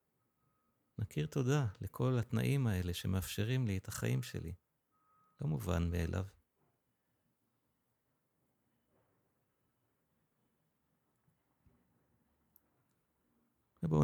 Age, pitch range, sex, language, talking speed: 50-69, 90-125 Hz, male, Hebrew, 60 wpm